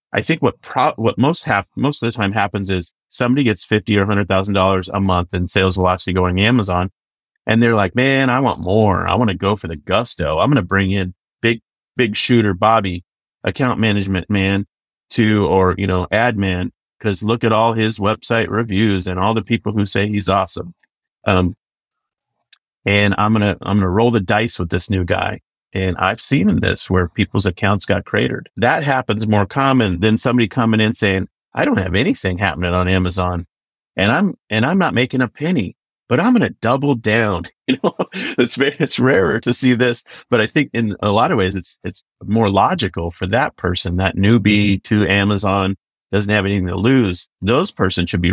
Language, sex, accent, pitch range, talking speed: English, male, American, 95-115 Hz, 200 wpm